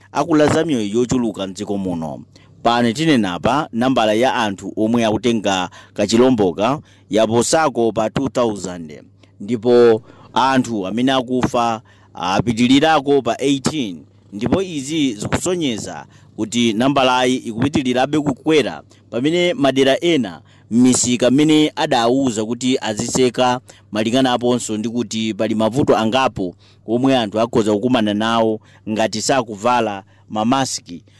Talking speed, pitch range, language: 110 wpm, 110-135 Hz, English